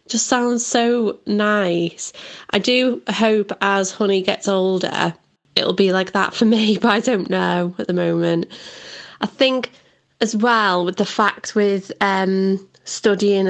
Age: 20-39